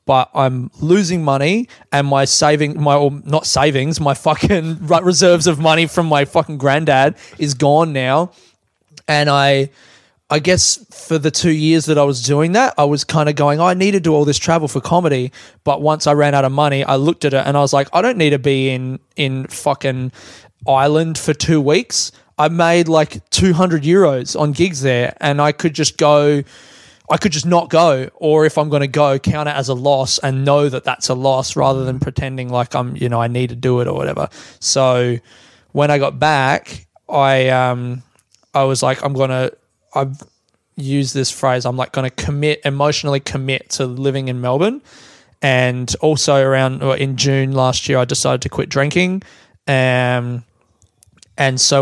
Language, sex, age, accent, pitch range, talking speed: English, male, 20-39, Australian, 130-155 Hz, 200 wpm